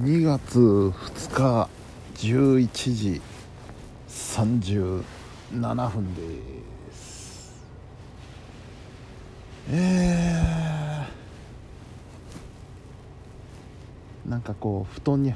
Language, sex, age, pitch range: Japanese, male, 60-79, 105-125 Hz